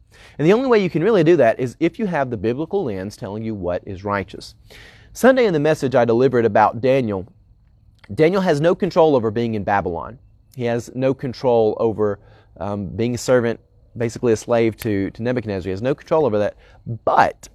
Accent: American